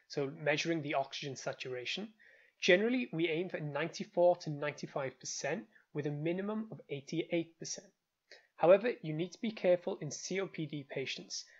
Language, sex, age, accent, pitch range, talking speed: English, male, 20-39, British, 150-200 Hz, 135 wpm